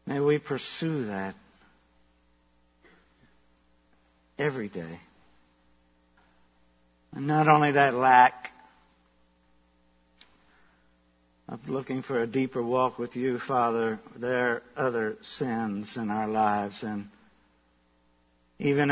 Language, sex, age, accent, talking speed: English, male, 60-79, American, 90 wpm